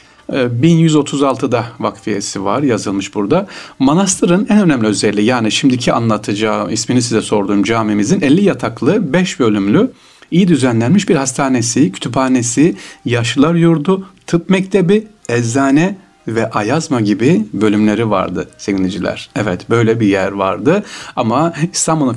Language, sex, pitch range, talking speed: Turkish, male, 105-150 Hz, 115 wpm